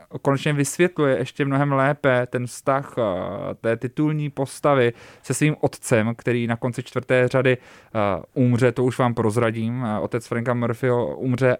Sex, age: male, 20-39